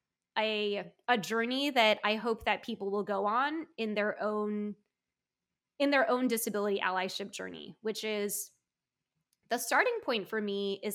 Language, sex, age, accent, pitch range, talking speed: English, female, 20-39, American, 205-235 Hz, 155 wpm